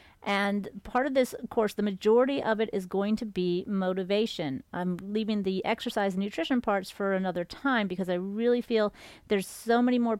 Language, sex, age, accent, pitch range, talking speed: English, female, 40-59, American, 190-230 Hz, 190 wpm